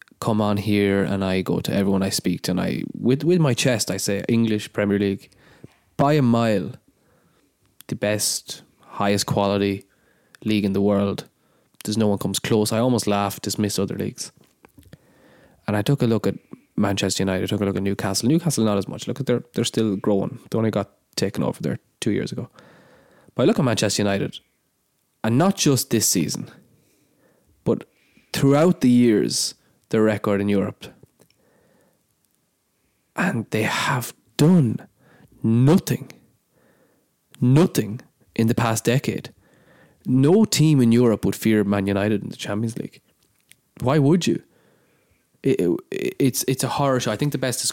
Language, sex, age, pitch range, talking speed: English, male, 20-39, 100-120 Hz, 165 wpm